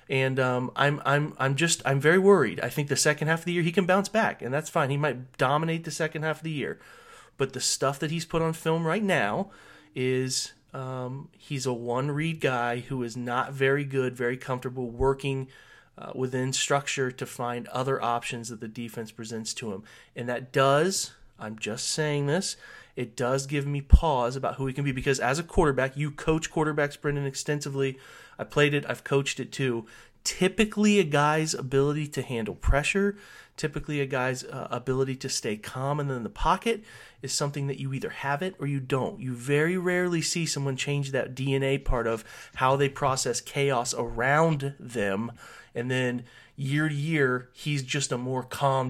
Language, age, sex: English, 30-49, male